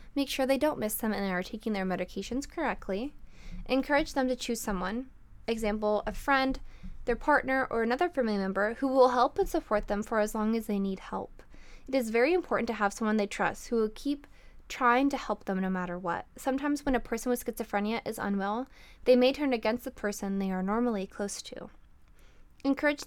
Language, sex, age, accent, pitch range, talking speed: English, female, 10-29, American, 215-275 Hz, 205 wpm